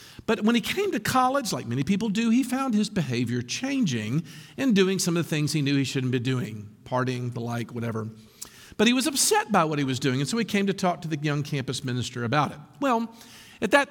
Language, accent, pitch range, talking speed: English, American, 135-220 Hz, 240 wpm